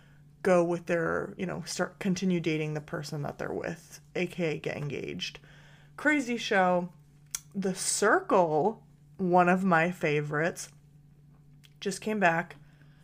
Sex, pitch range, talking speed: female, 155-185 Hz, 125 wpm